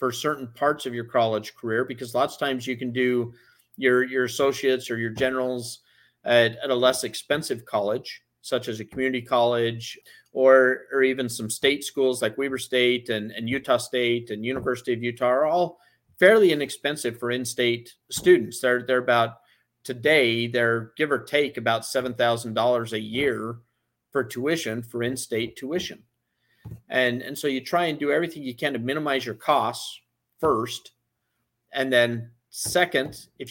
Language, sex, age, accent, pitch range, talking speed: English, male, 40-59, American, 120-135 Hz, 165 wpm